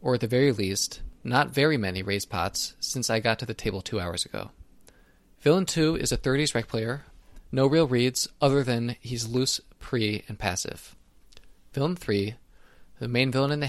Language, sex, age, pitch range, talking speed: English, male, 20-39, 105-130 Hz, 190 wpm